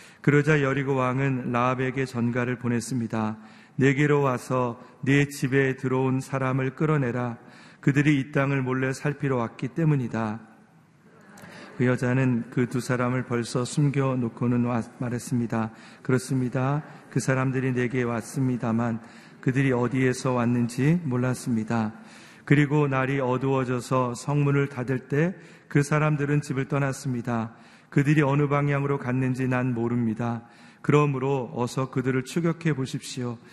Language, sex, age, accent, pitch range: Korean, male, 40-59, native, 125-145 Hz